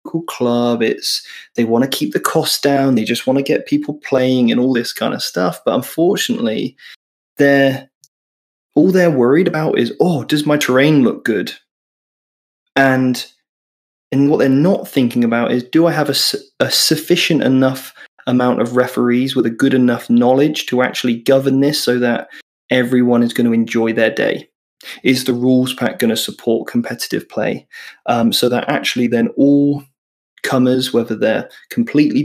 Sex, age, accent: male, 20-39, British